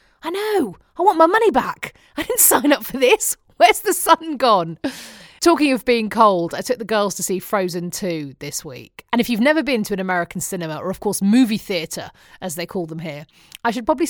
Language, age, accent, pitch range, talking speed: English, 30-49, British, 185-280 Hz, 225 wpm